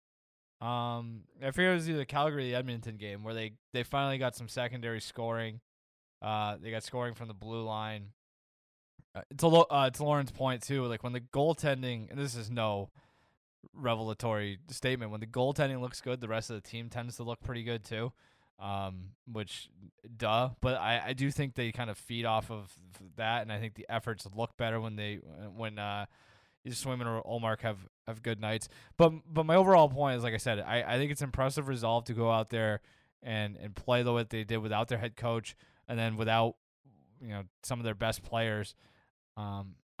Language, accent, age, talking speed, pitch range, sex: English, American, 20-39, 205 wpm, 110-130 Hz, male